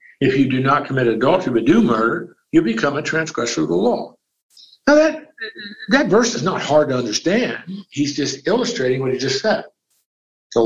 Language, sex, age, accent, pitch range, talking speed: English, male, 60-79, American, 130-215 Hz, 185 wpm